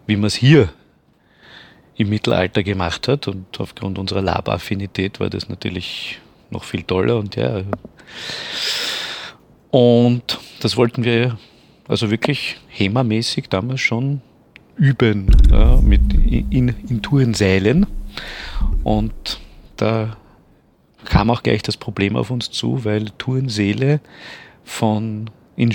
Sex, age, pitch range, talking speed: male, 40-59, 95-115 Hz, 110 wpm